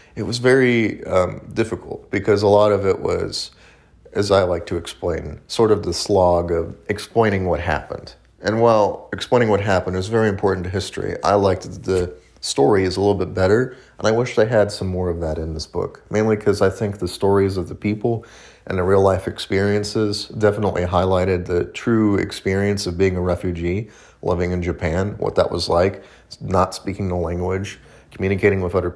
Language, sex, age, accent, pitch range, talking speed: English, male, 30-49, American, 90-105 Hz, 185 wpm